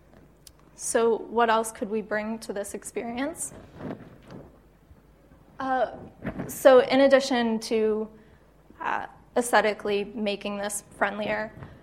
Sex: female